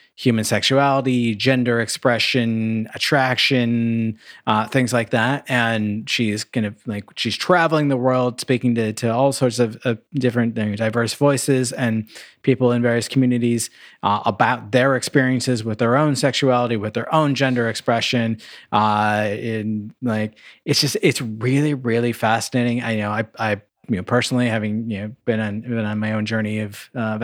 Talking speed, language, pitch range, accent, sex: 165 wpm, English, 110-125 Hz, American, male